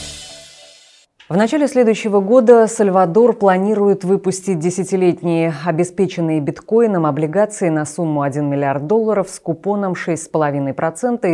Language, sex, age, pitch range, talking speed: Russian, female, 20-39, 155-205 Hz, 100 wpm